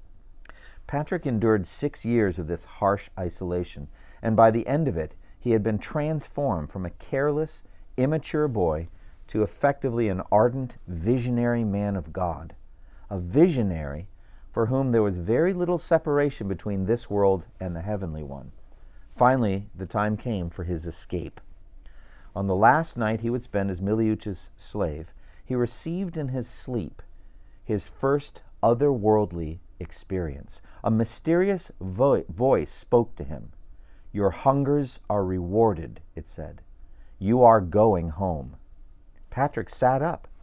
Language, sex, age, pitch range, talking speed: English, male, 50-69, 90-120 Hz, 135 wpm